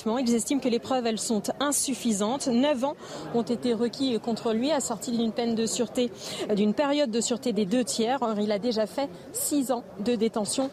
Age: 40-59